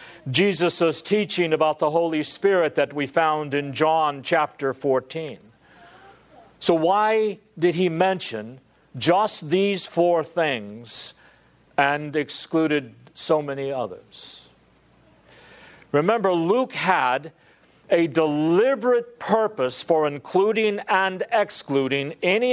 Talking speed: 100 wpm